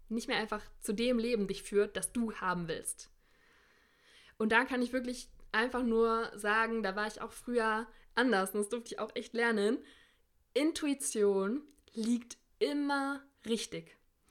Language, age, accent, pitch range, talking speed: German, 20-39, German, 205-245 Hz, 155 wpm